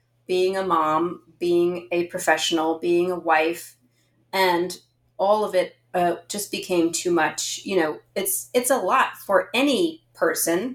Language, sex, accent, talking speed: English, female, American, 150 wpm